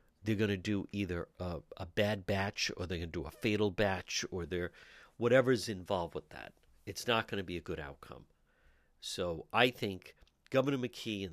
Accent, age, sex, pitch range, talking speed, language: American, 50-69, male, 85-110 Hz, 195 wpm, English